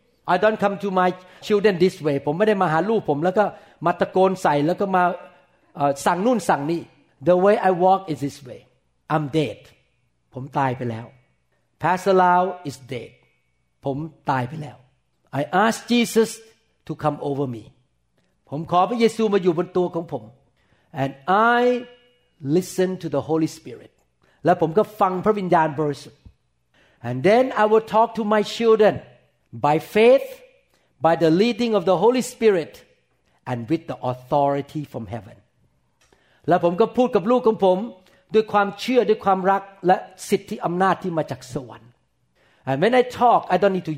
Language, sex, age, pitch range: Thai, male, 50-69, 140-205 Hz